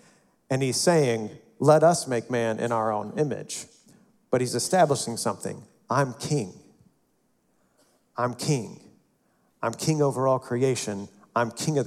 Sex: male